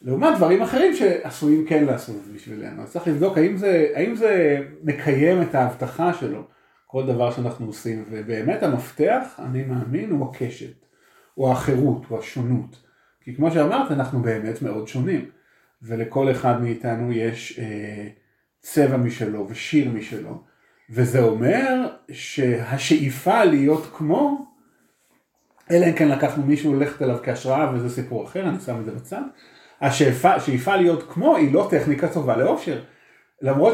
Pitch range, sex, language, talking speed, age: 125-160 Hz, male, Hebrew, 135 wpm, 40-59